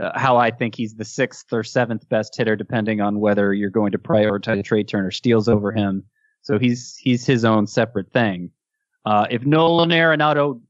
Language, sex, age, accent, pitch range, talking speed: English, male, 20-39, American, 110-140 Hz, 190 wpm